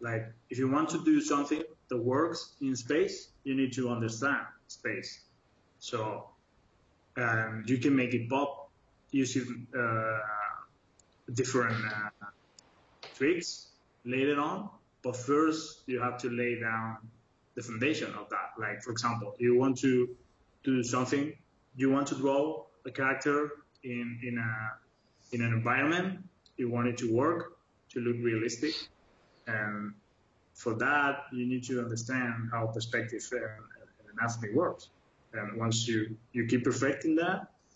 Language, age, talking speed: English, 20-39, 140 wpm